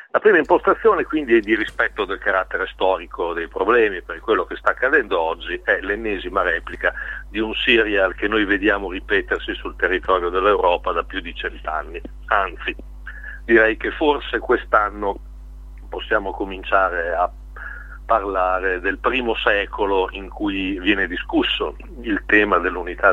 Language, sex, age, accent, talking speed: Italian, male, 50-69, native, 140 wpm